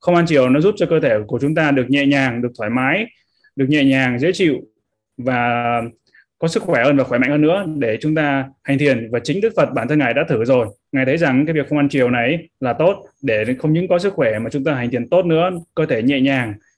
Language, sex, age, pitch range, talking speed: Vietnamese, male, 20-39, 120-150 Hz, 270 wpm